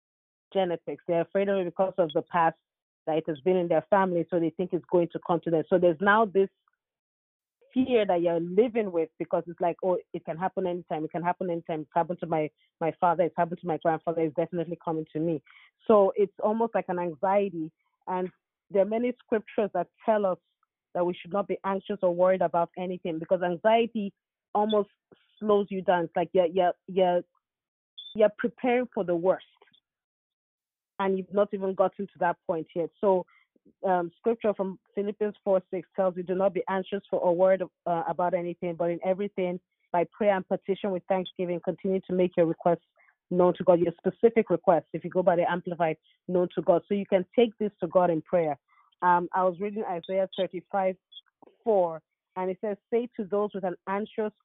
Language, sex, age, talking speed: English, female, 30-49, 205 wpm